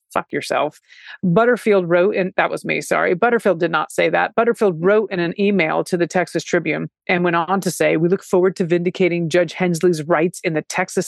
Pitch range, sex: 175-225 Hz, female